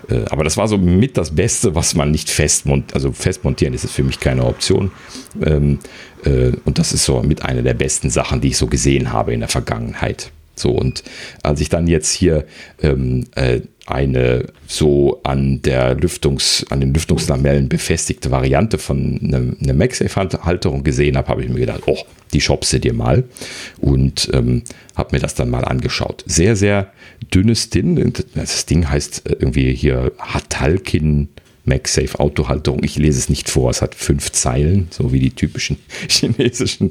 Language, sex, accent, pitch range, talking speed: German, male, German, 70-95 Hz, 170 wpm